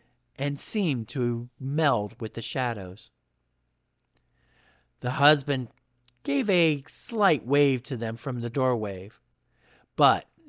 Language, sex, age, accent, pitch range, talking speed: English, male, 50-69, American, 115-150 Hz, 110 wpm